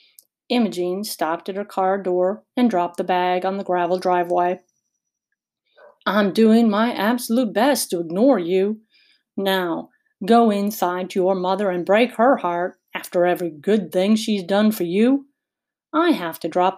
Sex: female